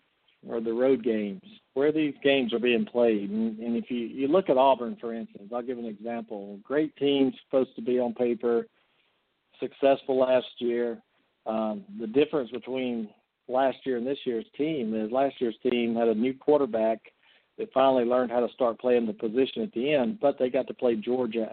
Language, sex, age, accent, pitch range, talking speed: English, male, 50-69, American, 115-130 Hz, 190 wpm